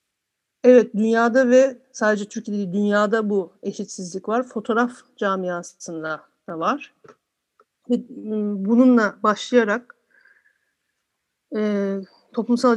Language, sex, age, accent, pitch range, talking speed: Turkish, female, 50-69, native, 205-250 Hz, 80 wpm